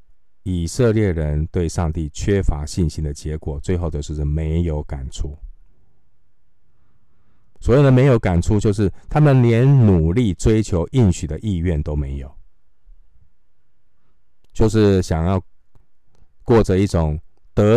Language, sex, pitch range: Chinese, male, 75-95 Hz